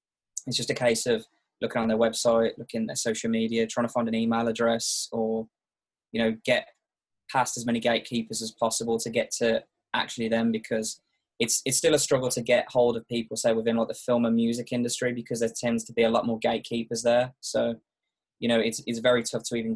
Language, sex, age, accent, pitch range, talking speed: English, male, 20-39, British, 115-120 Hz, 220 wpm